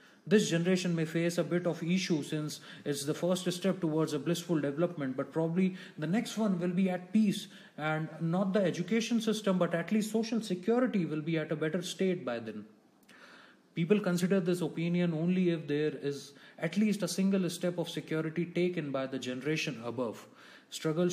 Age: 30-49